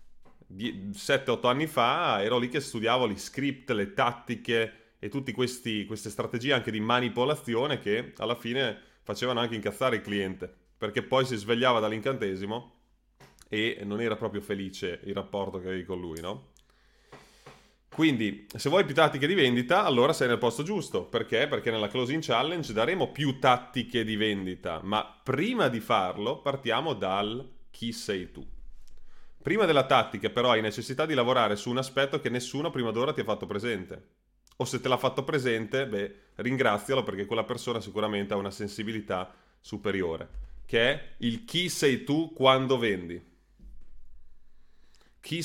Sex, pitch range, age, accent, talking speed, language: male, 100-130 Hz, 30-49, native, 155 wpm, Italian